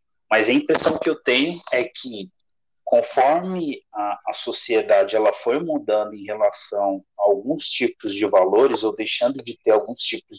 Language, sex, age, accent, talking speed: Portuguese, male, 40-59, Brazilian, 160 wpm